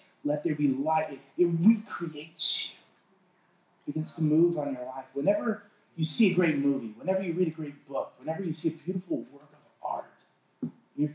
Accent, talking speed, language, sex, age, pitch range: American, 195 wpm, English, male, 30-49, 145-205 Hz